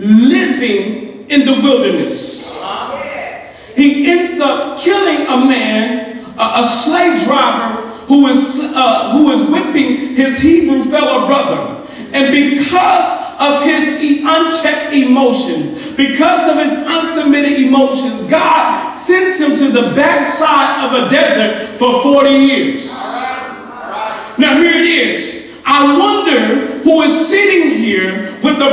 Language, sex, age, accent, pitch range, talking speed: English, male, 40-59, American, 265-320 Hz, 125 wpm